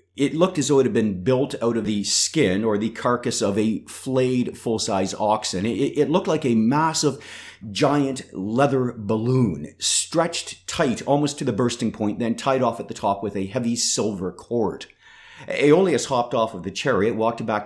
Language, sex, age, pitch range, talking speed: English, male, 40-59, 100-125 Hz, 185 wpm